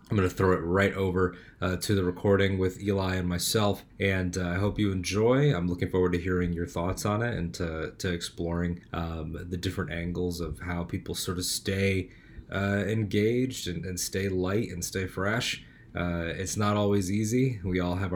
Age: 20-39